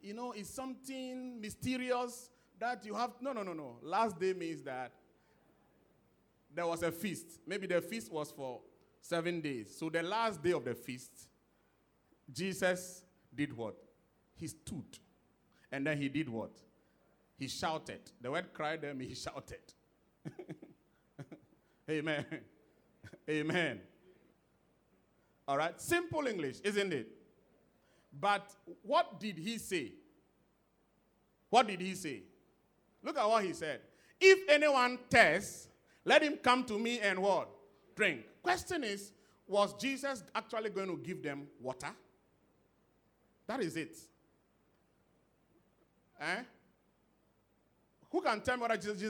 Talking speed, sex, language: 125 wpm, male, English